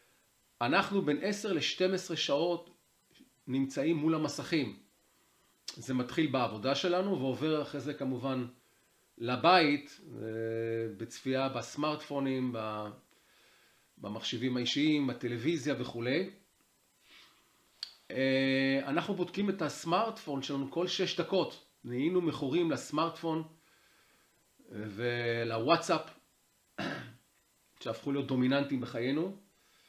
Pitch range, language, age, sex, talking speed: 125-165 Hz, English, 40-59, male, 65 wpm